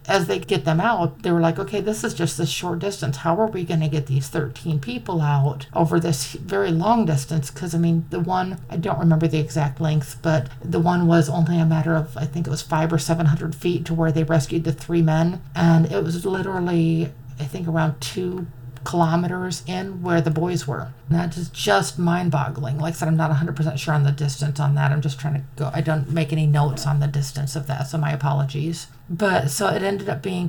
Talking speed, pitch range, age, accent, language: 230 wpm, 145-175 Hz, 50-69, American, English